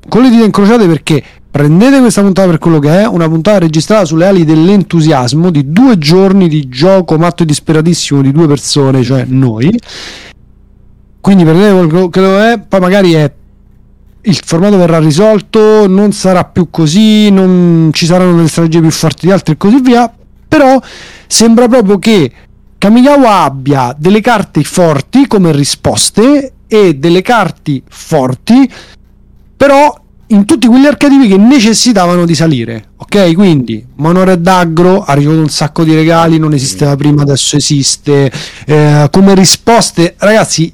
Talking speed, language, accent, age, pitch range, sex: 150 wpm, Italian, native, 40-59, 145-205 Hz, male